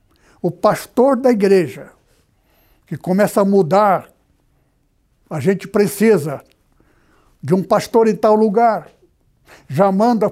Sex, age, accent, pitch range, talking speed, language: male, 60-79, Brazilian, 170-220 Hz, 110 wpm, Portuguese